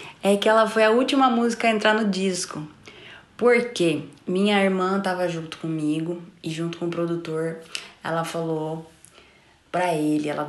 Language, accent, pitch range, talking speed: Portuguese, Brazilian, 165-210 Hz, 155 wpm